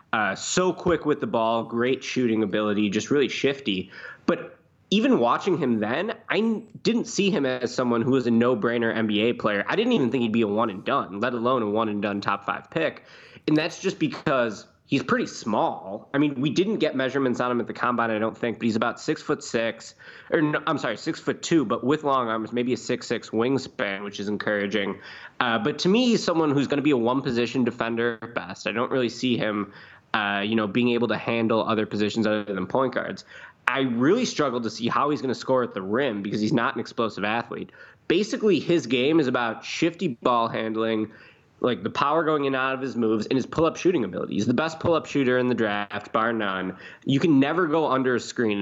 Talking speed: 235 wpm